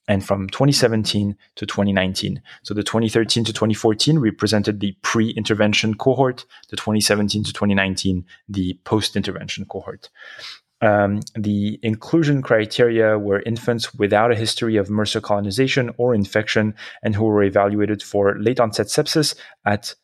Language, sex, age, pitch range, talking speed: English, male, 20-39, 100-115 Hz, 130 wpm